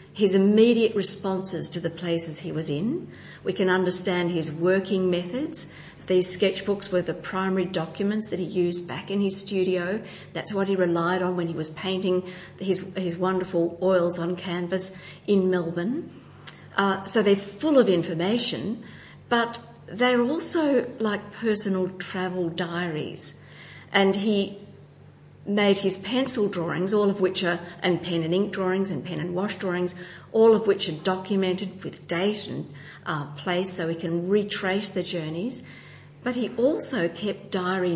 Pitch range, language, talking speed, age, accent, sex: 175-200 Hz, English, 155 wpm, 50-69, Australian, female